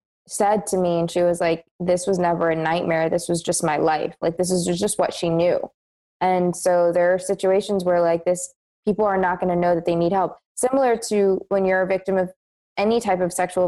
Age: 20-39